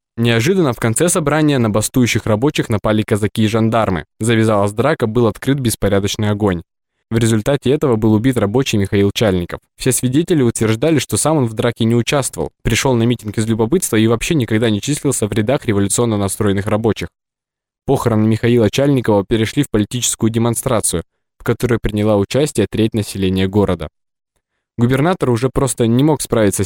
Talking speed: 160 wpm